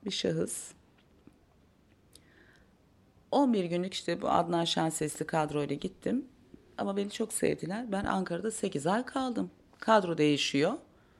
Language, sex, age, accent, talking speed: Turkish, female, 40-59, native, 115 wpm